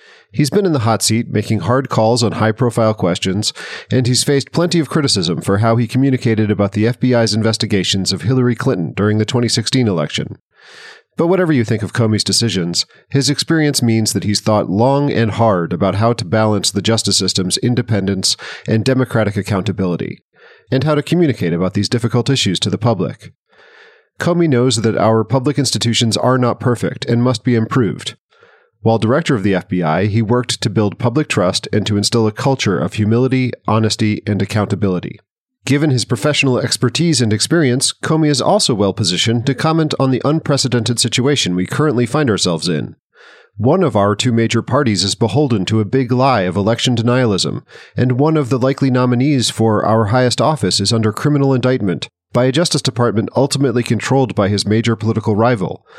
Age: 40-59